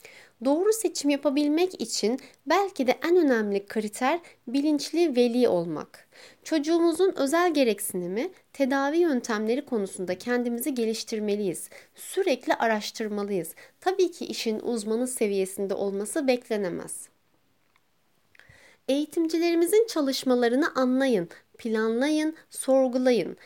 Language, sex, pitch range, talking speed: Turkish, female, 215-300 Hz, 85 wpm